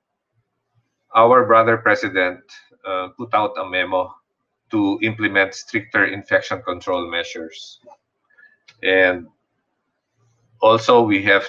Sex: male